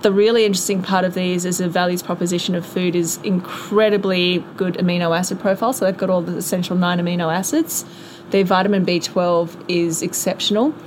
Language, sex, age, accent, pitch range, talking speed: English, female, 20-39, Australian, 170-190 Hz, 175 wpm